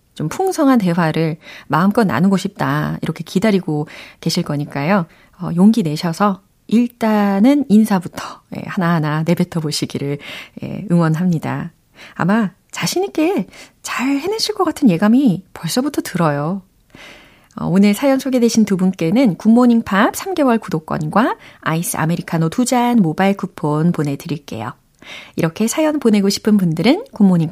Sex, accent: female, native